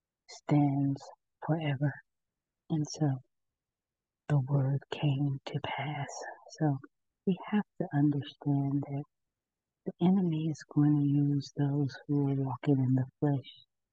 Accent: American